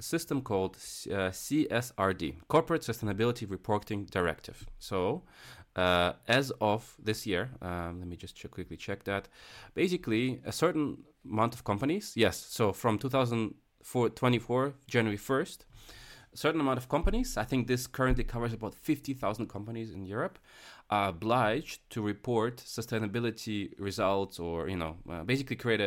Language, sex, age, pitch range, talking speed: English, male, 20-39, 95-130 Hz, 150 wpm